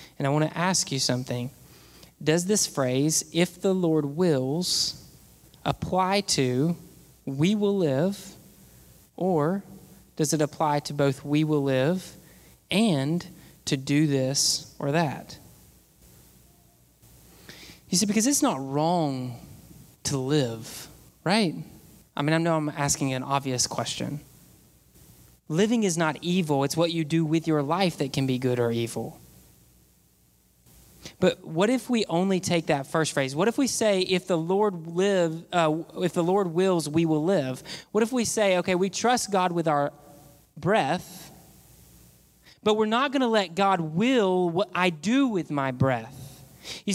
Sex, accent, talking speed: male, American, 155 wpm